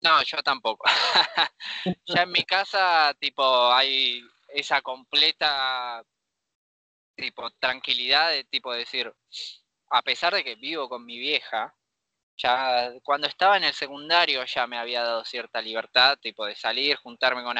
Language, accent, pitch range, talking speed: Spanish, Argentinian, 115-145 Hz, 140 wpm